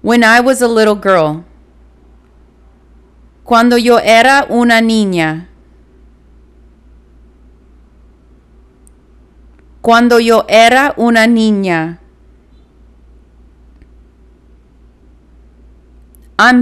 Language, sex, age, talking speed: Spanish, female, 30-49, 60 wpm